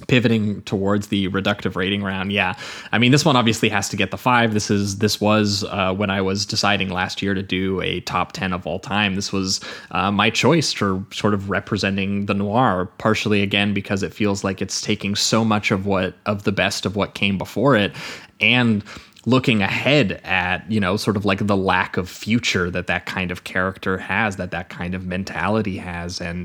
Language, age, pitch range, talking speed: English, 20-39, 95-110 Hz, 210 wpm